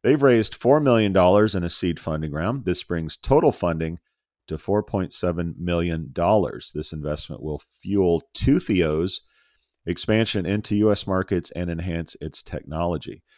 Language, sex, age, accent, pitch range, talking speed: English, male, 50-69, American, 85-100 Hz, 130 wpm